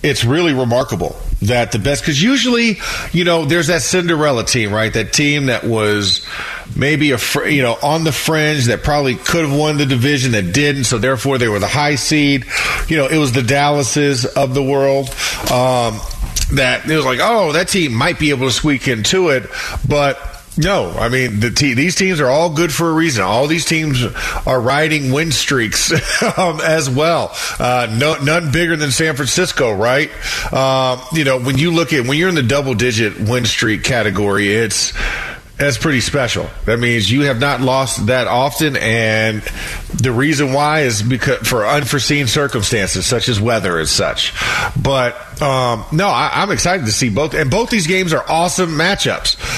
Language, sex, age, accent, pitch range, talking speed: English, male, 40-59, American, 120-155 Hz, 190 wpm